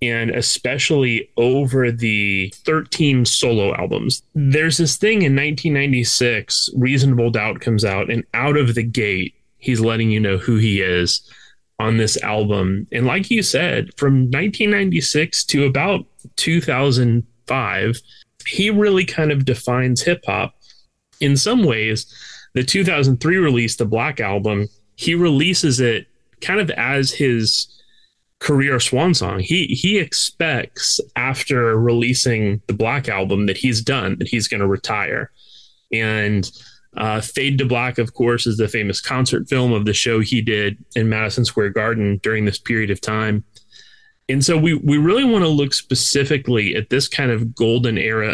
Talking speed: 150 wpm